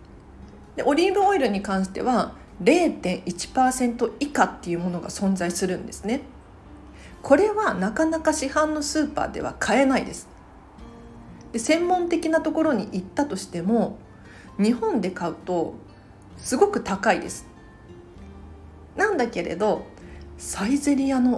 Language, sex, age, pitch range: Japanese, female, 40-59, 175-285 Hz